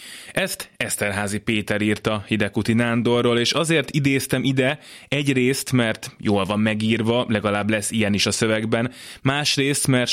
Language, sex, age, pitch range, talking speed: Hungarian, male, 20-39, 100-125 Hz, 135 wpm